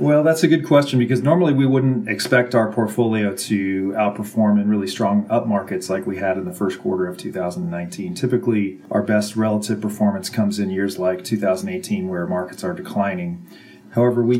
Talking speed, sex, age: 185 wpm, male, 40-59